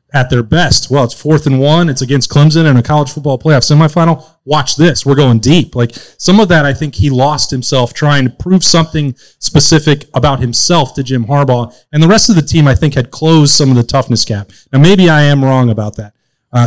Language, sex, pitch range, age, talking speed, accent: English, male, 125-150 Hz, 30-49, 230 wpm, American